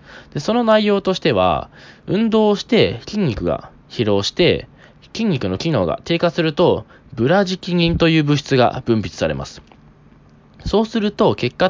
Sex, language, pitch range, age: male, Japanese, 110-185 Hz, 20-39